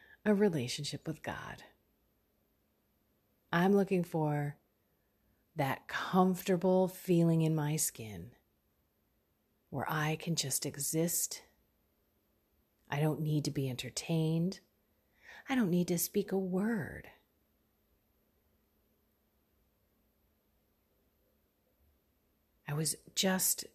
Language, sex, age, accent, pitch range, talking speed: English, female, 30-49, American, 130-190 Hz, 85 wpm